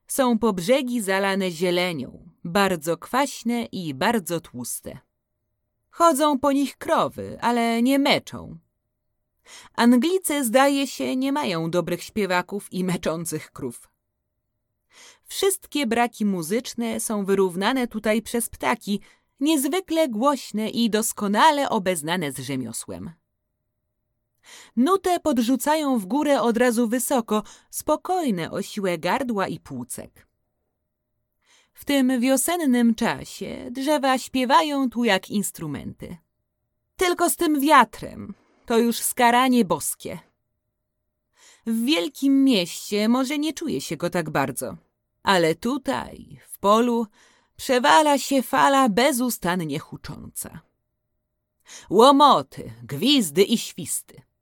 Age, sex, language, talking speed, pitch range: 30-49, female, Polish, 105 wpm, 180-275 Hz